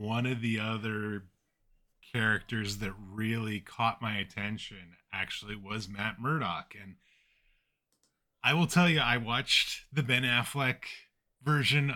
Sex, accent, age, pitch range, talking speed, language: male, American, 30-49, 105-130 Hz, 125 wpm, English